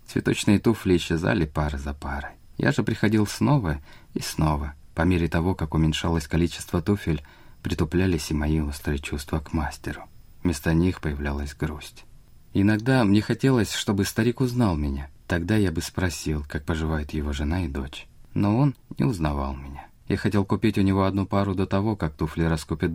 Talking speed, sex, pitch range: 165 wpm, male, 75-100 Hz